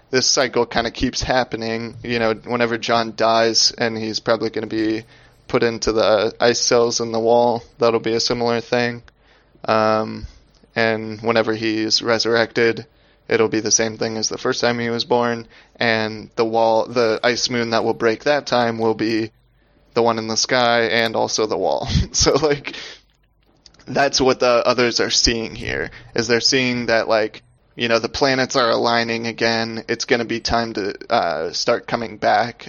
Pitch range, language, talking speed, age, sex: 115-125 Hz, English, 185 wpm, 20-39, male